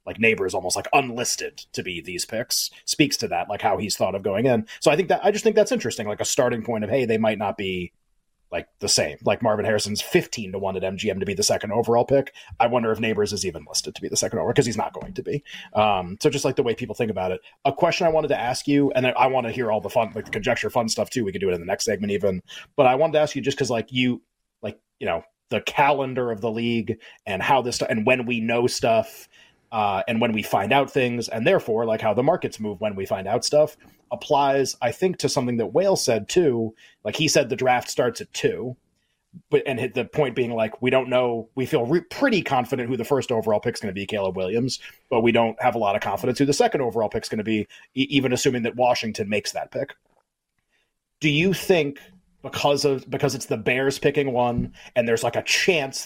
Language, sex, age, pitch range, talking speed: English, male, 30-49, 110-145 Hz, 260 wpm